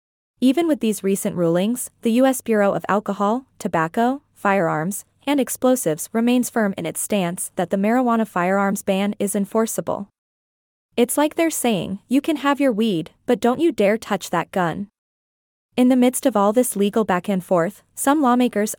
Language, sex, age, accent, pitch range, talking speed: English, female, 20-39, American, 200-245 Hz, 170 wpm